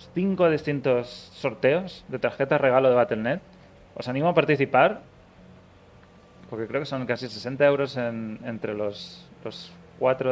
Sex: male